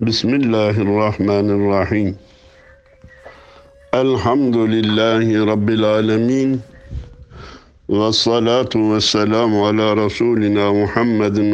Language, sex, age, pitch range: Turkish, male, 60-79, 105-135 Hz